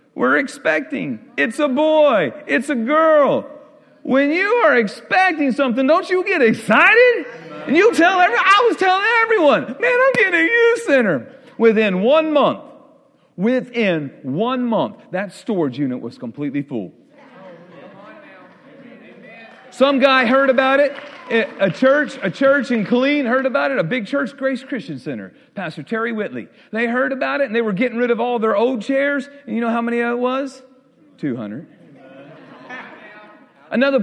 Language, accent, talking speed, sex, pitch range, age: English, American, 160 wpm, male, 235-290 Hz, 40-59